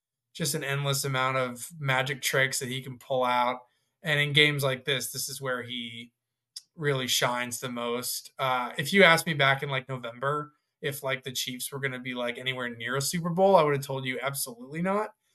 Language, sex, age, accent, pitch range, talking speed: English, male, 20-39, American, 125-145 Hz, 215 wpm